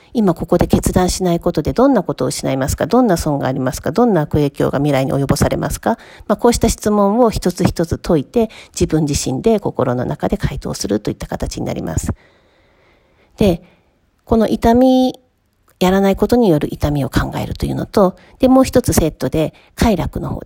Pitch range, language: 150-215 Hz, Japanese